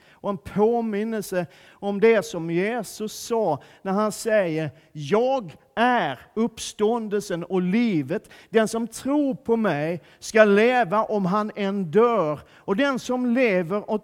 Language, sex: Swedish, male